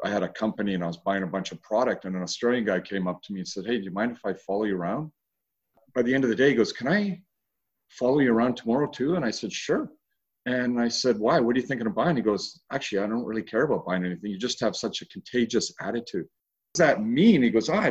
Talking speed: 280 wpm